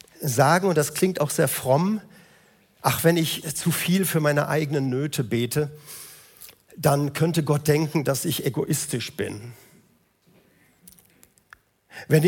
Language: German